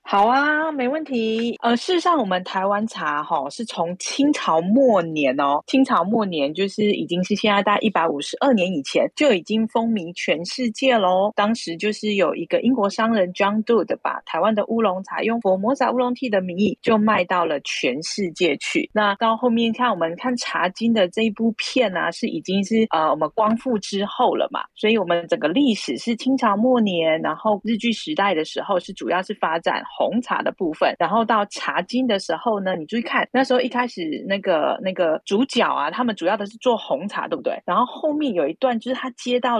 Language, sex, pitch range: Chinese, female, 185-245 Hz